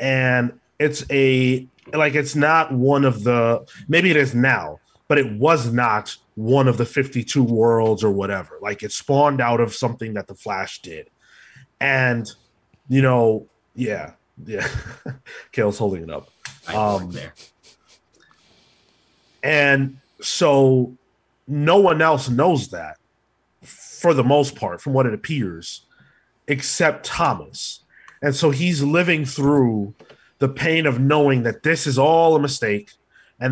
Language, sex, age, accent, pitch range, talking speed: English, male, 30-49, American, 115-145 Hz, 140 wpm